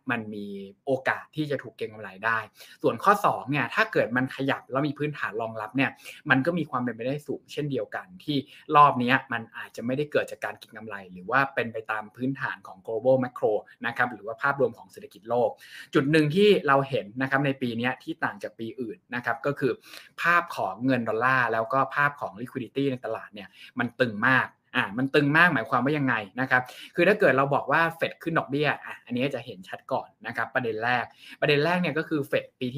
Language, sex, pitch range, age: Thai, male, 120-145 Hz, 20-39